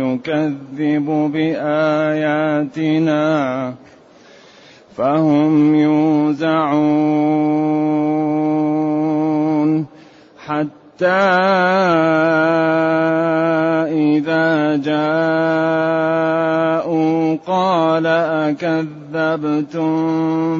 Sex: male